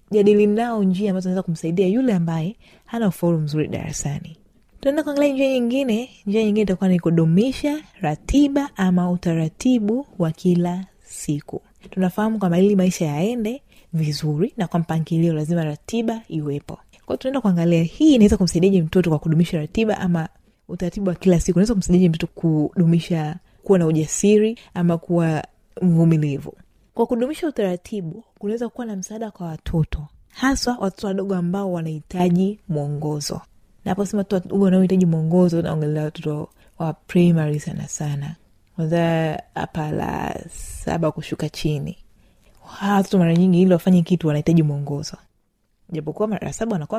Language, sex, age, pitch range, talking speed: Swahili, female, 20-39, 160-210 Hz, 135 wpm